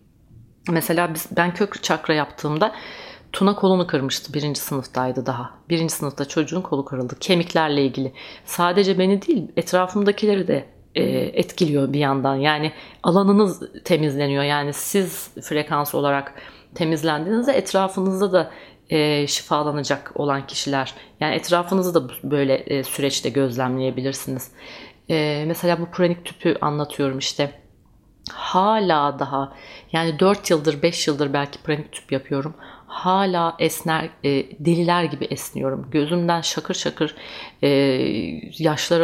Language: Turkish